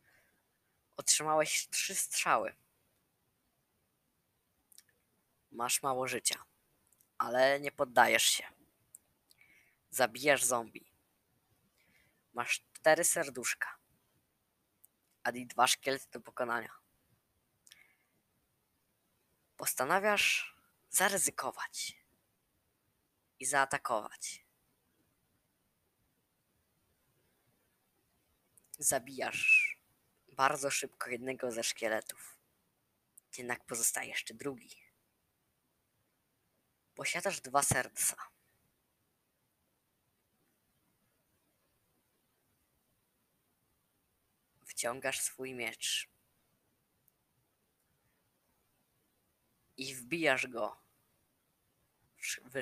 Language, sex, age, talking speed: Polish, female, 20-39, 50 wpm